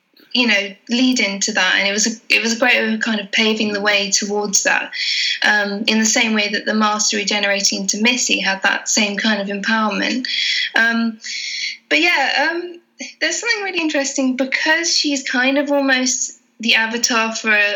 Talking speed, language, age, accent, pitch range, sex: 180 wpm, English, 10-29, British, 220-275 Hz, female